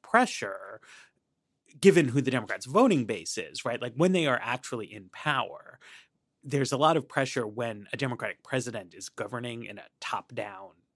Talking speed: 170 wpm